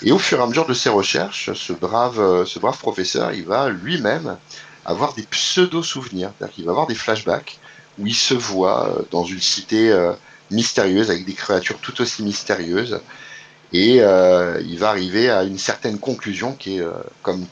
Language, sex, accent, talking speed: French, male, French, 175 wpm